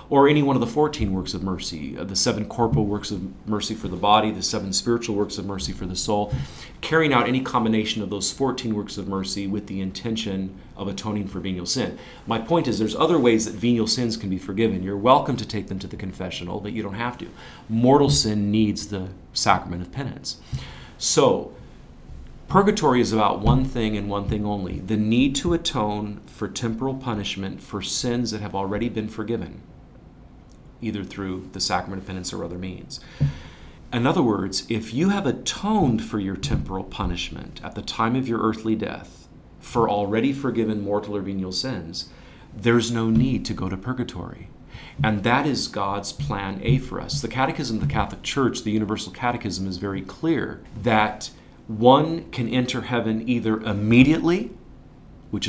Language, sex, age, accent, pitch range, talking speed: English, male, 40-59, American, 95-120 Hz, 185 wpm